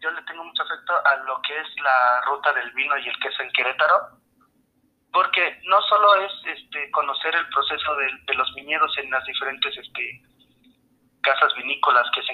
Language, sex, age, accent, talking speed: Spanish, male, 30-49, Mexican, 185 wpm